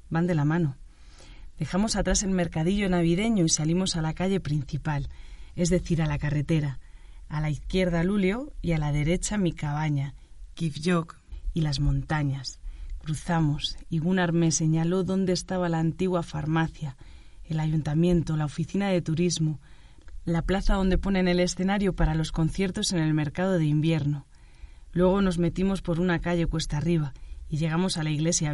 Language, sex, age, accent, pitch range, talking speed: Spanish, female, 30-49, Spanish, 150-180 Hz, 160 wpm